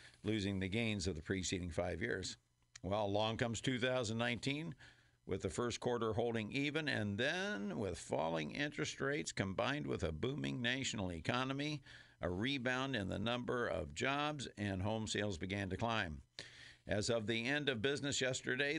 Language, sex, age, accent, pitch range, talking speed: English, male, 60-79, American, 100-125 Hz, 160 wpm